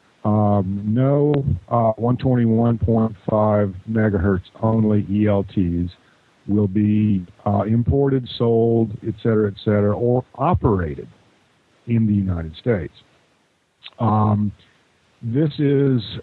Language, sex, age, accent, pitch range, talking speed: English, male, 50-69, American, 95-115 Hz, 85 wpm